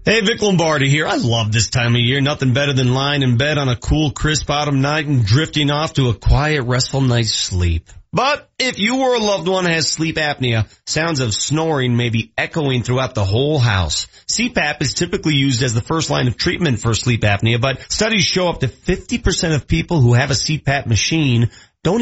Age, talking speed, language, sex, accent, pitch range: 40-59, 215 wpm, English, male, American, 125-170 Hz